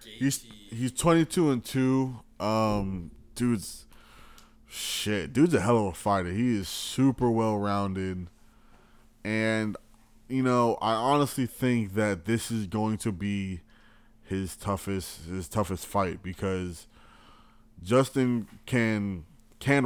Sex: male